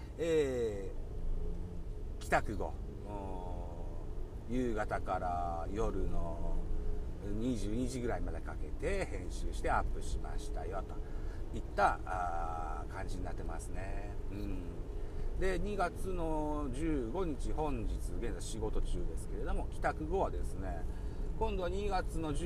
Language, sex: Japanese, male